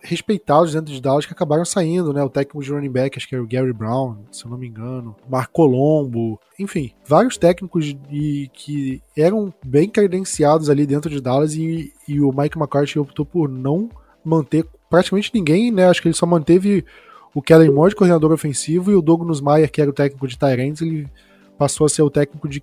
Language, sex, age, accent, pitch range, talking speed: Portuguese, male, 20-39, Brazilian, 135-165 Hz, 205 wpm